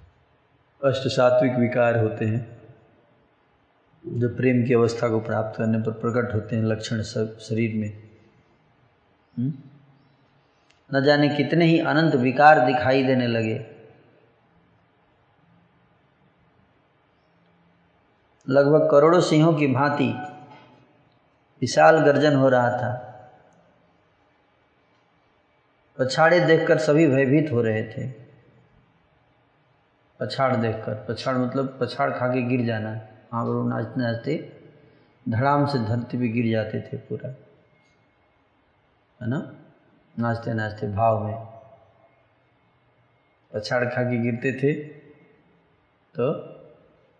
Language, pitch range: Hindi, 115-145 Hz